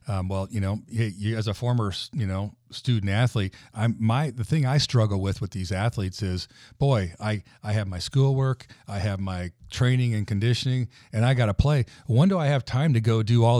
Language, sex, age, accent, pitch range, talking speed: English, male, 40-59, American, 105-125 Hz, 220 wpm